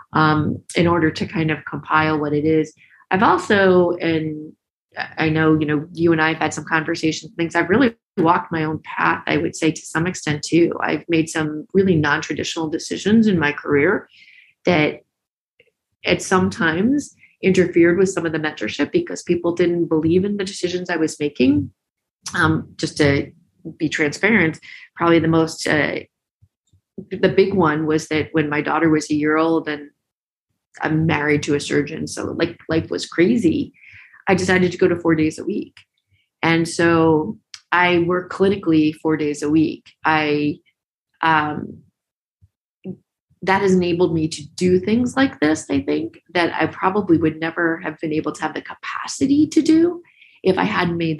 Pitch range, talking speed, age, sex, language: 155-180 Hz, 170 wpm, 30-49, female, English